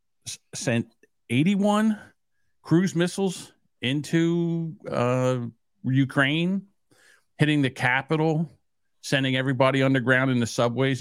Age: 50-69